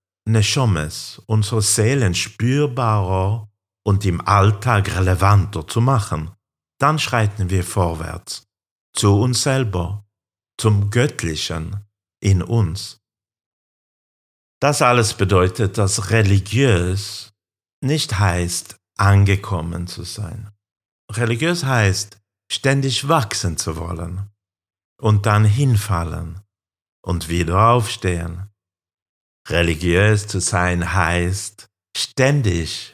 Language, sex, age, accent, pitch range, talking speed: German, male, 50-69, German, 90-110 Hz, 85 wpm